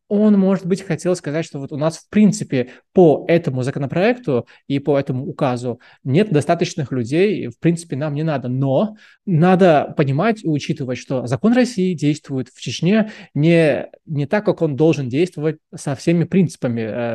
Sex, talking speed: male, 165 wpm